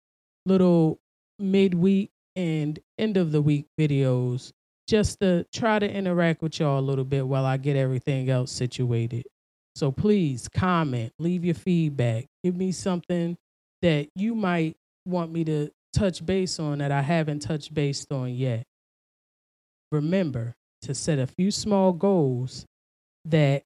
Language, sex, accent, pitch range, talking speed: English, male, American, 130-170 Hz, 145 wpm